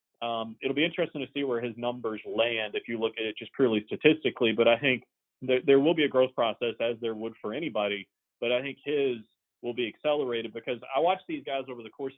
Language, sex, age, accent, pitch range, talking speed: English, male, 30-49, American, 110-130 Hz, 230 wpm